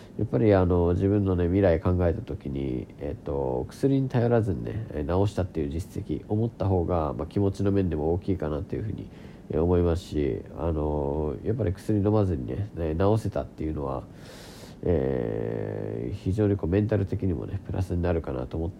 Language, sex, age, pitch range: Japanese, male, 40-59, 80-100 Hz